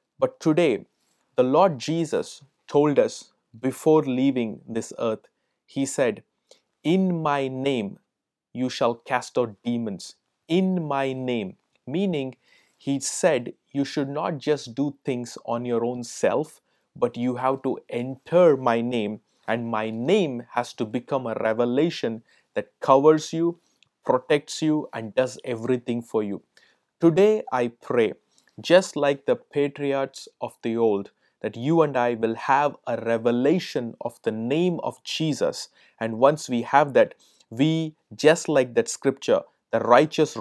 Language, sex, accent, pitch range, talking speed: English, male, Indian, 120-150 Hz, 145 wpm